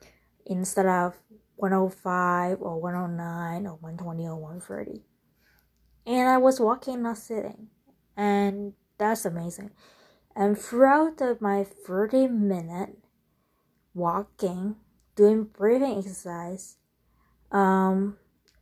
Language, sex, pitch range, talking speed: English, female, 185-225 Hz, 90 wpm